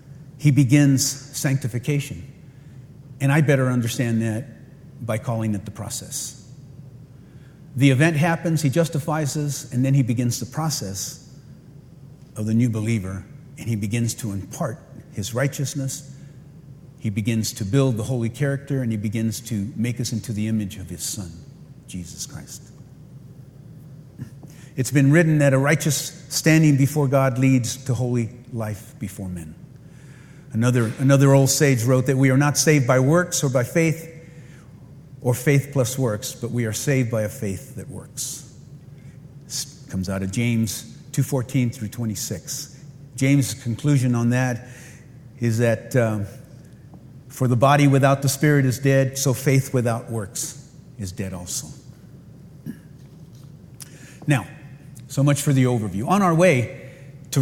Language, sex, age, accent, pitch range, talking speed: English, male, 50-69, American, 120-145 Hz, 145 wpm